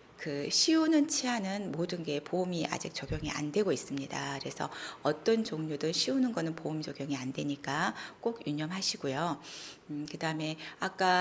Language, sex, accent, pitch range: Korean, female, native, 145-220 Hz